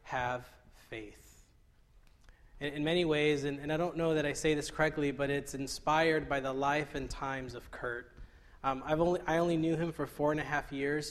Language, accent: English, American